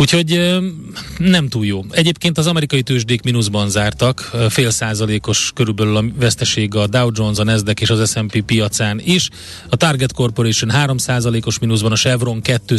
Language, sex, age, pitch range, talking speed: Hungarian, male, 30-49, 110-130 Hz, 160 wpm